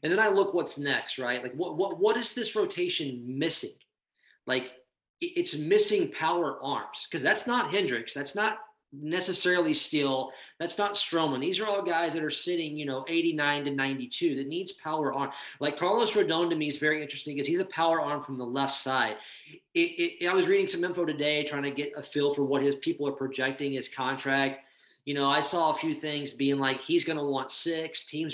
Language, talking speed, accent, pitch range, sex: English, 210 wpm, American, 140-190 Hz, male